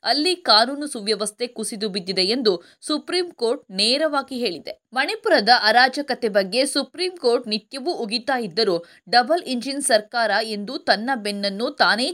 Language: Kannada